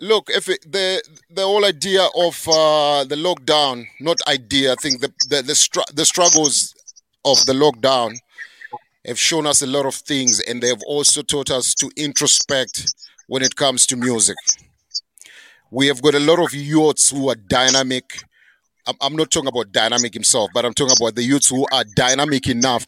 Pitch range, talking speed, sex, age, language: 130-165 Hz, 185 wpm, male, 30-49, English